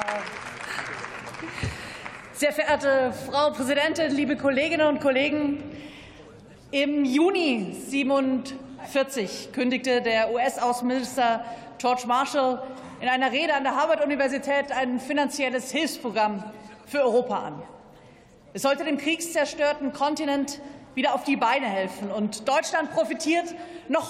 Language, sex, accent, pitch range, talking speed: German, female, German, 245-295 Hz, 105 wpm